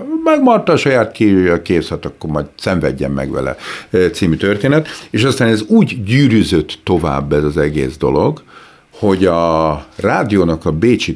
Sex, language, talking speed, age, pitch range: male, Hungarian, 140 wpm, 50-69, 80-115 Hz